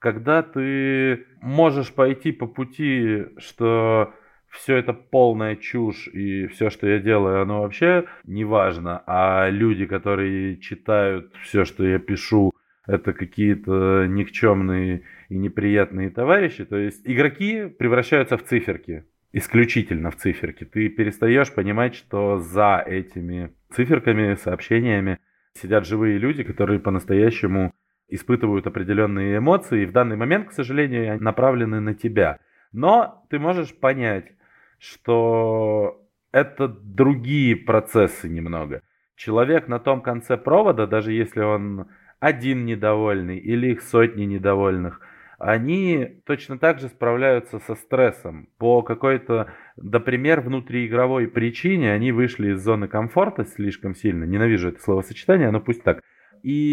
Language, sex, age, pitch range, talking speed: Russian, male, 20-39, 100-130 Hz, 125 wpm